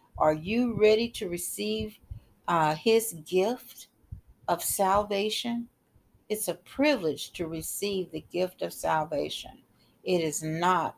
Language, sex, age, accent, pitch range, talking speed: English, female, 60-79, American, 160-205 Hz, 120 wpm